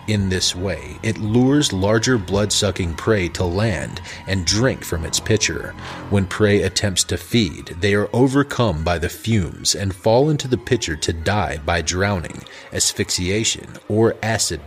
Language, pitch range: English, 90-115 Hz